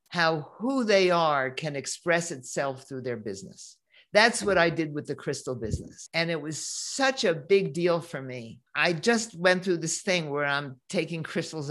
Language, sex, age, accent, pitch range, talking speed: English, male, 50-69, American, 150-190 Hz, 190 wpm